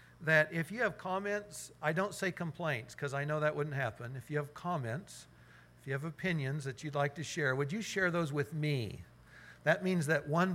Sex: male